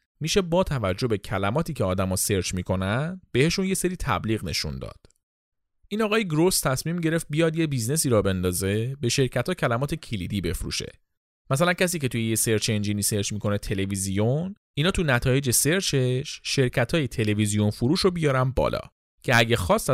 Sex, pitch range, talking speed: male, 105-160 Hz, 165 wpm